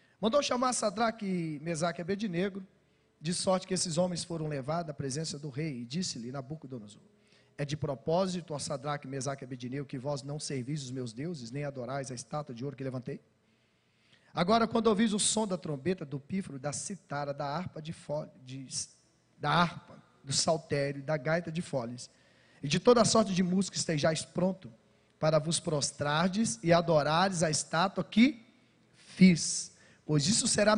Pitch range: 140-200 Hz